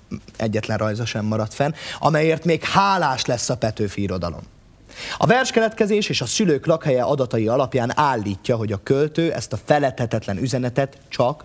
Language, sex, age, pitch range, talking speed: Hungarian, male, 30-49, 110-160 Hz, 145 wpm